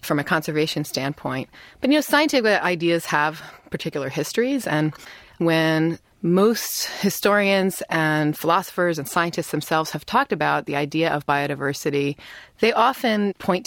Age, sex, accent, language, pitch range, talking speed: 30-49, female, American, English, 150-195 Hz, 135 wpm